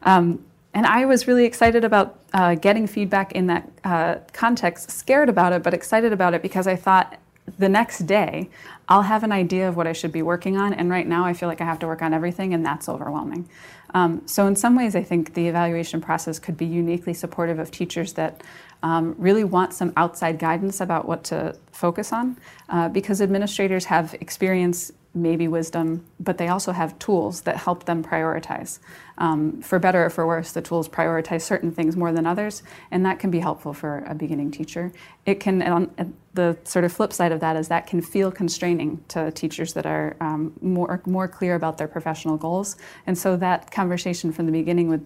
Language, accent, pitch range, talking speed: English, American, 160-185 Hz, 210 wpm